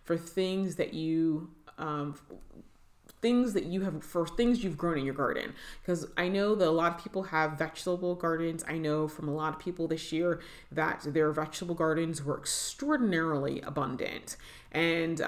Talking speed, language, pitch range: 170 wpm, English, 150-180 Hz